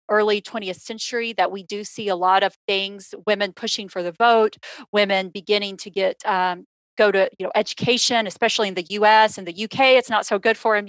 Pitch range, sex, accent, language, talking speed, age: 200-245 Hz, female, American, English, 215 wpm, 40-59